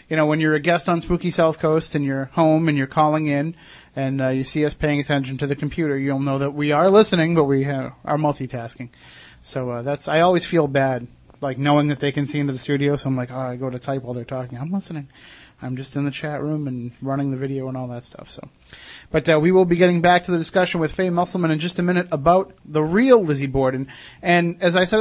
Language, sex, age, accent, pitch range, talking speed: English, male, 30-49, American, 135-165 Hz, 260 wpm